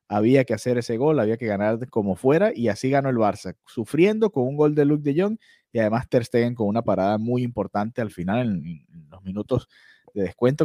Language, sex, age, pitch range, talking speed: Spanish, male, 30-49, 100-135 Hz, 225 wpm